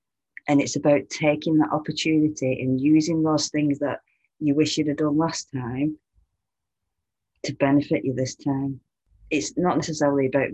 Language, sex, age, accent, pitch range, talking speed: English, female, 30-49, British, 125-145 Hz, 155 wpm